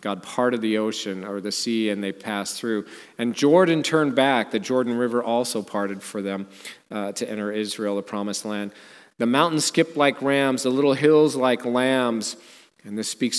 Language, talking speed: English, 190 wpm